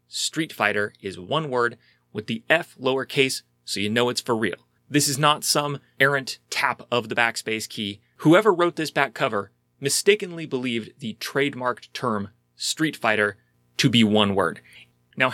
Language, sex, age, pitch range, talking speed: English, male, 30-49, 105-140 Hz, 165 wpm